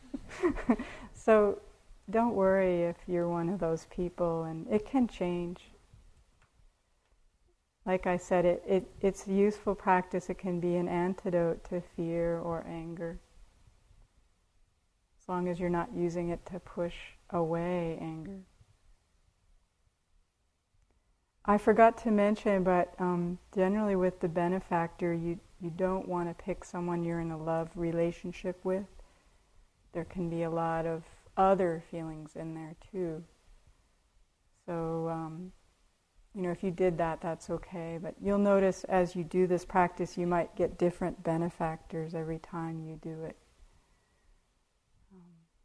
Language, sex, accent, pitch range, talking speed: English, female, American, 165-185 Hz, 140 wpm